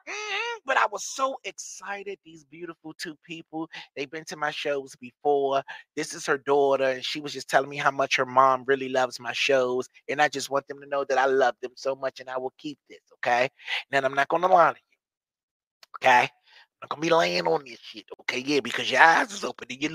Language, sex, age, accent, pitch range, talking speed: English, male, 30-49, American, 140-195 Hz, 235 wpm